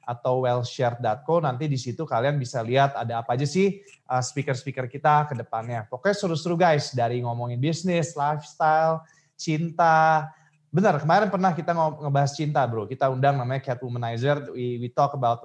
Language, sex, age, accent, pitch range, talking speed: Indonesian, male, 20-39, native, 130-165 Hz, 150 wpm